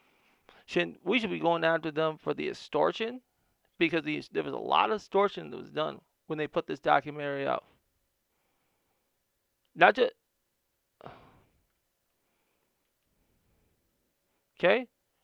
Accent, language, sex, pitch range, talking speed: American, English, male, 155-185 Hz, 120 wpm